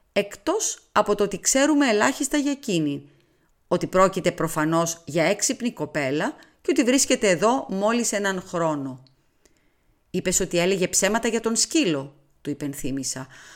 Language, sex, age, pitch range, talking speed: Greek, female, 30-49, 155-230 Hz, 135 wpm